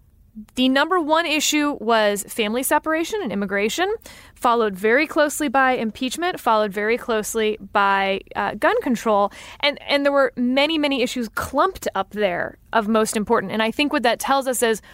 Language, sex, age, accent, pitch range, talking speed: English, female, 20-39, American, 215-270 Hz, 170 wpm